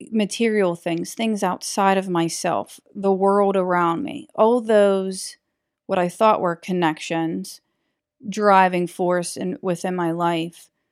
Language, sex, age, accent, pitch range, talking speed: English, female, 30-49, American, 175-210 Hz, 120 wpm